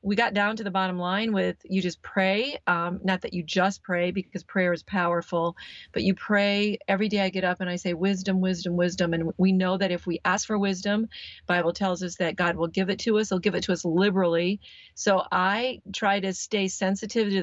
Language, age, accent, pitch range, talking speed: English, 40-59, American, 185-215 Hz, 230 wpm